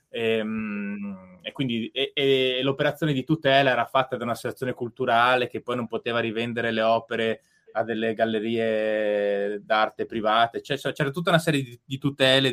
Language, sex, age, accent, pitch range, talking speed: Italian, male, 20-39, native, 115-140 Hz, 160 wpm